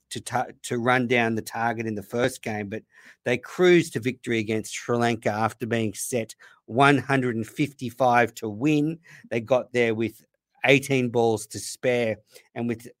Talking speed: 160 wpm